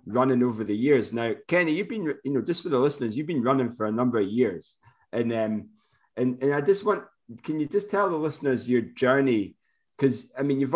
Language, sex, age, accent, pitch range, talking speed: English, male, 30-49, British, 115-140 Hz, 235 wpm